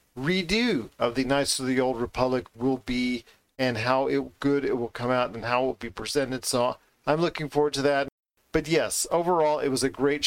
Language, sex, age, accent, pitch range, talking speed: English, male, 40-59, American, 125-140 Hz, 210 wpm